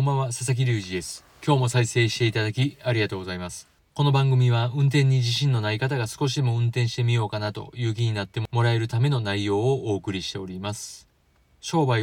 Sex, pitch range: male, 100-125 Hz